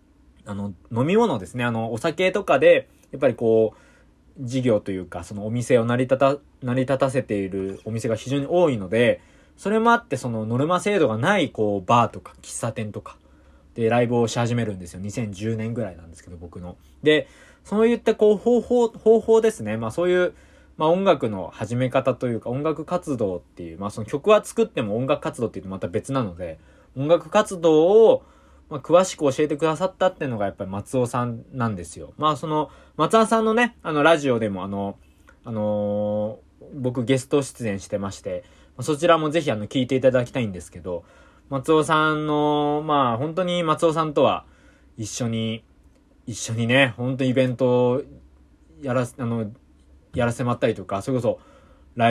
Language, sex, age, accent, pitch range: Japanese, male, 20-39, native, 105-155 Hz